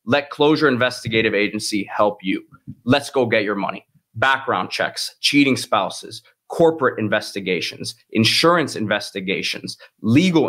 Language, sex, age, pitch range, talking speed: English, male, 20-39, 110-140 Hz, 115 wpm